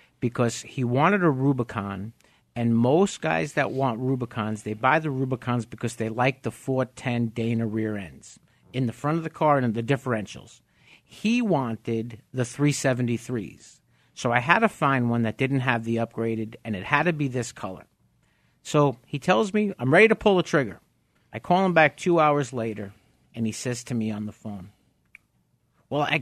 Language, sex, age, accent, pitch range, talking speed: English, male, 50-69, American, 115-150 Hz, 185 wpm